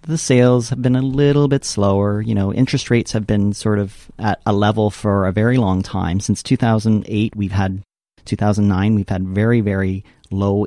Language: English